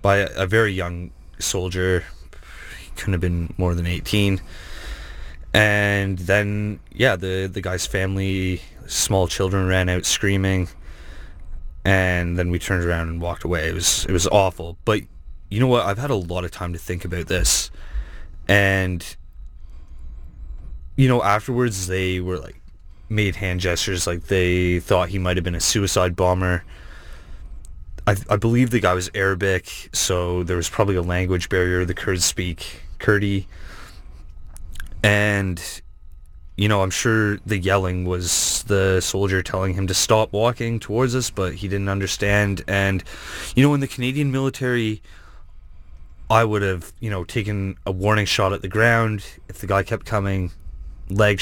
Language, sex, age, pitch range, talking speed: English, male, 20-39, 80-100 Hz, 155 wpm